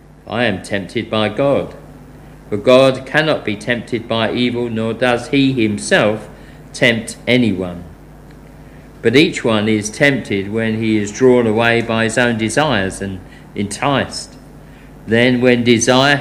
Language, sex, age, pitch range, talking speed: English, male, 50-69, 110-140 Hz, 135 wpm